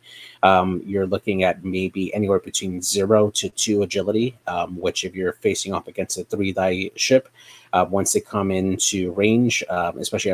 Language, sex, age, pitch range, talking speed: English, male, 30-49, 90-105 Hz, 170 wpm